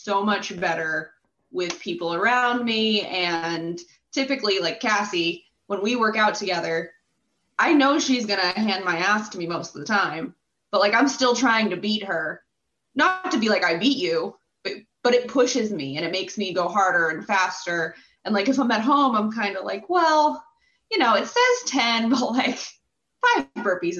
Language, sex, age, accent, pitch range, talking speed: English, female, 20-39, American, 170-230 Hz, 195 wpm